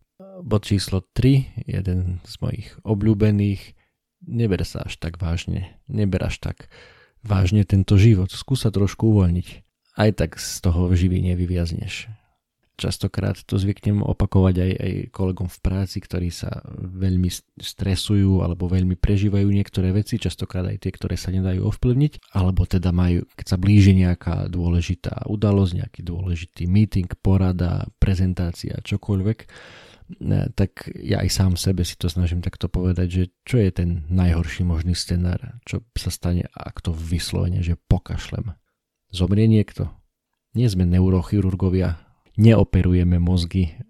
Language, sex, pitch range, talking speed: Slovak, male, 90-105 Hz, 135 wpm